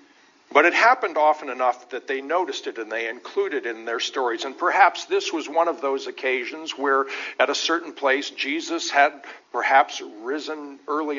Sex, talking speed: male, 180 wpm